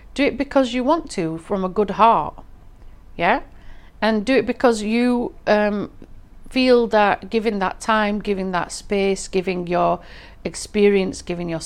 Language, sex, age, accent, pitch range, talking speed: English, female, 40-59, British, 170-230 Hz, 155 wpm